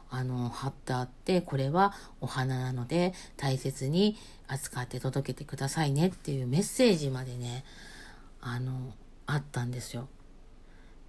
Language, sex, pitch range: Japanese, female, 130-175 Hz